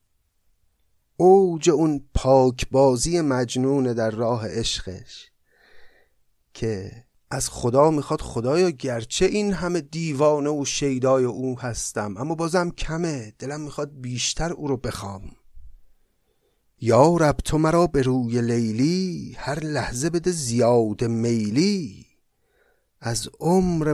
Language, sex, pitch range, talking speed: Persian, male, 120-170 Hz, 110 wpm